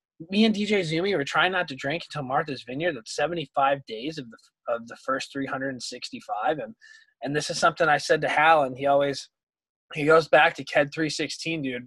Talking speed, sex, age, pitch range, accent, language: 200 wpm, male, 20-39, 135-170 Hz, American, English